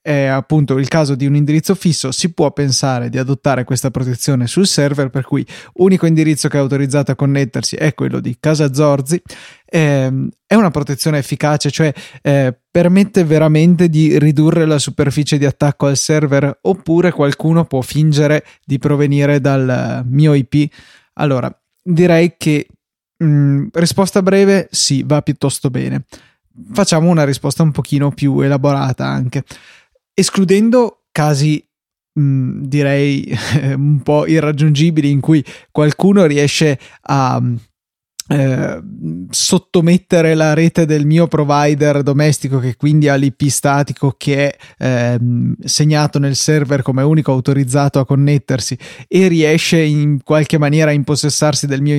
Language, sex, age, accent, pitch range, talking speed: Italian, male, 20-39, native, 140-155 Hz, 140 wpm